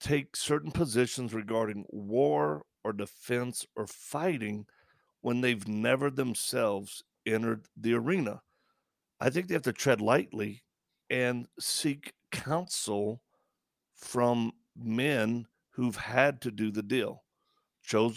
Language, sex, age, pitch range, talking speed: English, male, 50-69, 110-130 Hz, 115 wpm